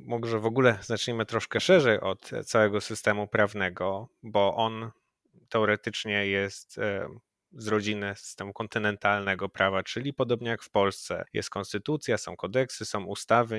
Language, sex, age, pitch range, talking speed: Polish, male, 20-39, 105-120 Hz, 135 wpm